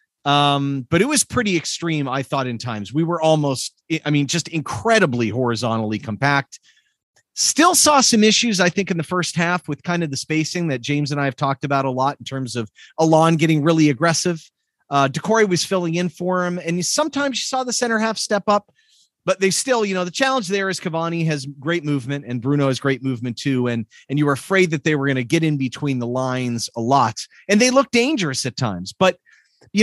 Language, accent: English, American